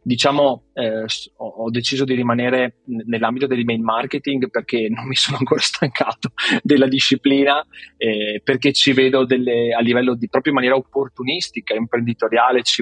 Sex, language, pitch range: male, Italian, 115-130 Hz